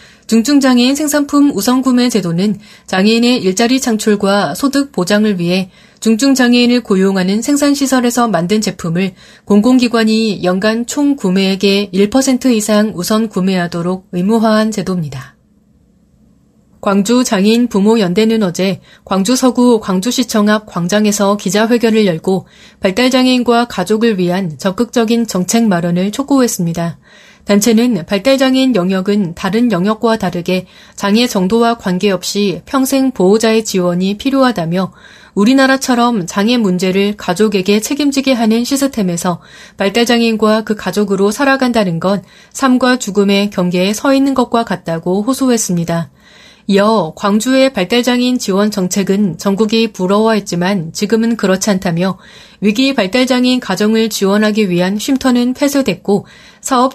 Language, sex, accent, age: Korean, female, native, 30-49